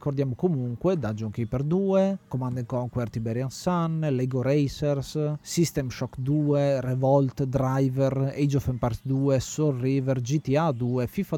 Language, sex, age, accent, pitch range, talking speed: Italian, male, 30-49, native, 125-155 Hz, 130 wpm